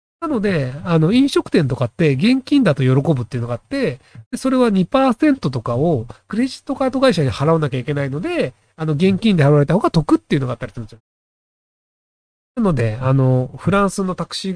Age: 40-59